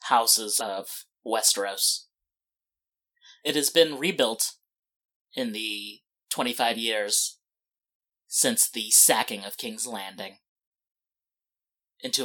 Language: English